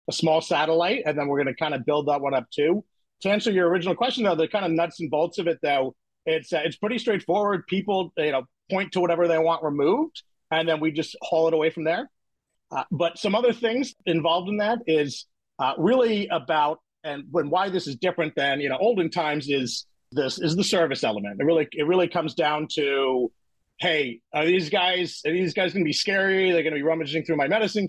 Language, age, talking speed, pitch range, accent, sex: English, 40-59, 235 wpm, 145-185 Hz, American, male